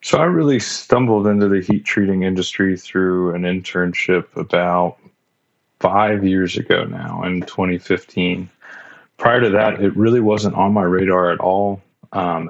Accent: American